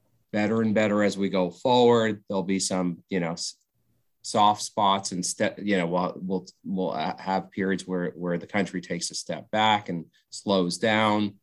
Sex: male